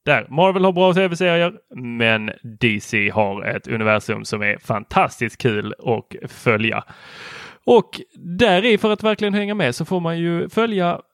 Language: Swedish